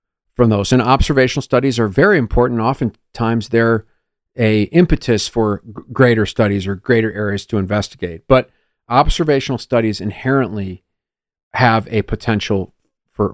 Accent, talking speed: American, 125 wpm